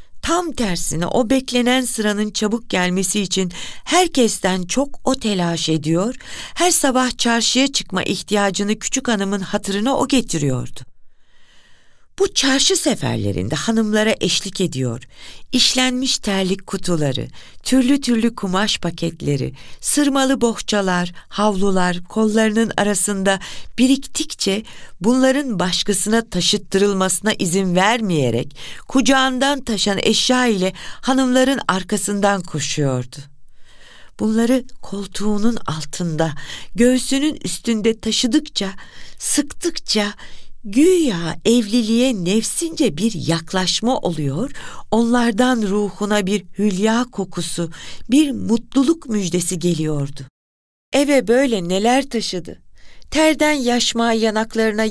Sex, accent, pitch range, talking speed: female, native, 185-255 Hz, 90 wpm